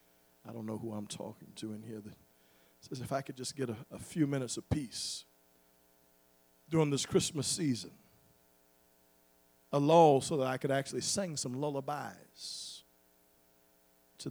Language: English